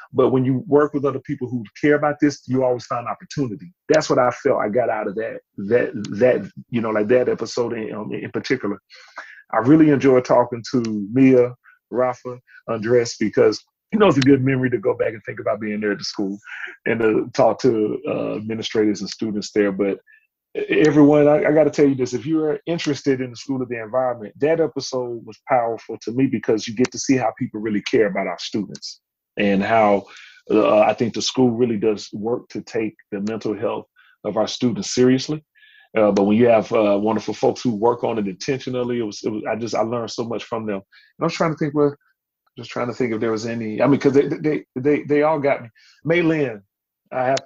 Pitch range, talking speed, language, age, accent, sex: 110-140 Hz, 225 wpm, English, 30-49, American, male